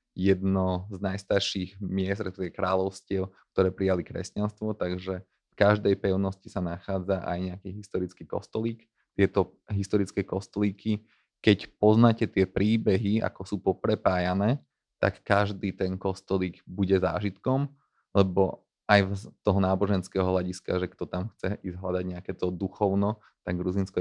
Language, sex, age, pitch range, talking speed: Slovak, male, 30-49, 95-100 Hz, 130 wpm